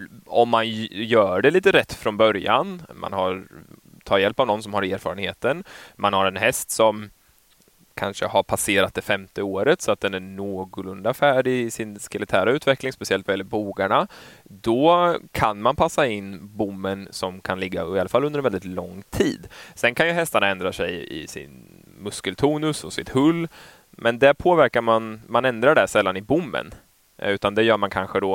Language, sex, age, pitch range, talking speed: Swedish, male, 20-39, 100-120 Hz, 185 wpm